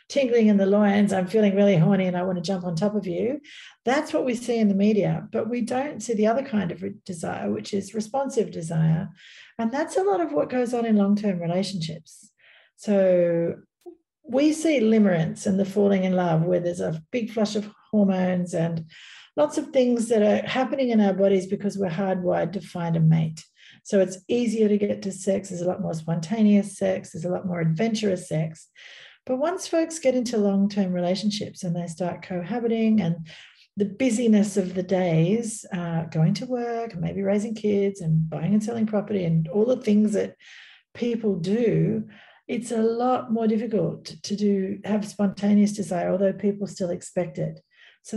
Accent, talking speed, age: Australian, 190 wpm, 40-59